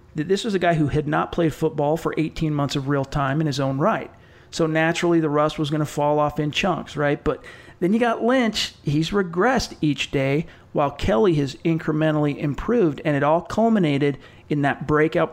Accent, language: American, English